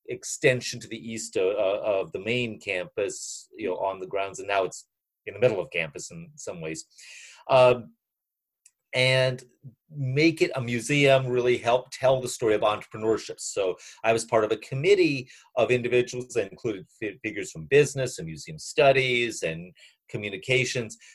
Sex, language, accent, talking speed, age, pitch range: male, English, American, 165 wpm, 40-59, 120-180 Hz